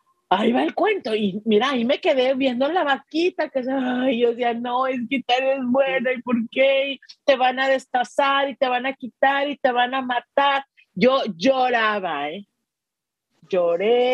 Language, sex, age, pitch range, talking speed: Spanish, female, 40-59, 230-285 Hz, 190 wpm